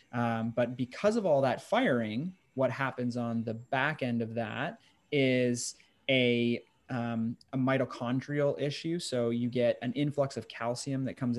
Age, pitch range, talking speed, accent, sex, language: 20-39, 115-135 Hz, 160 wpm, American, male, English